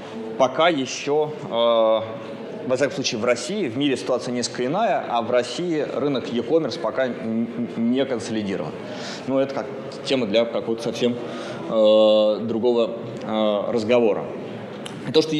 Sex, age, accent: male, 20-39, native